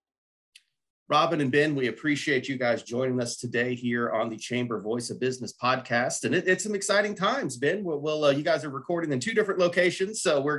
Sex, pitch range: male, 120-175 Hz